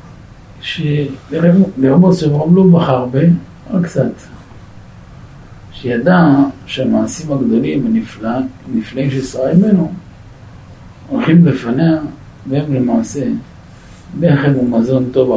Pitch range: 110-145 Hz